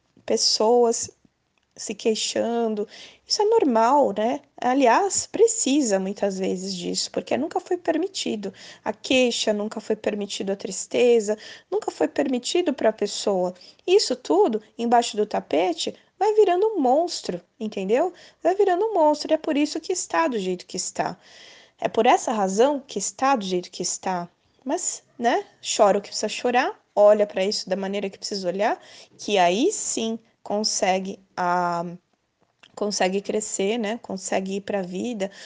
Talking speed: 150 wpm